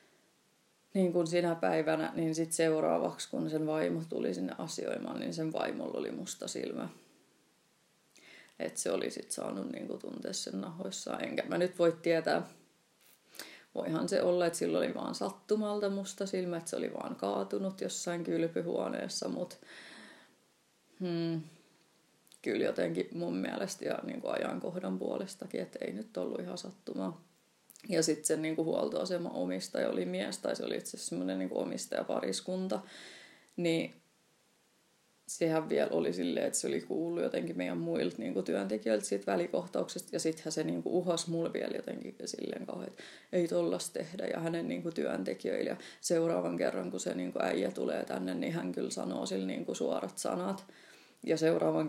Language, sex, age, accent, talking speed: Finnish, female, 30-49, native, 155 wpm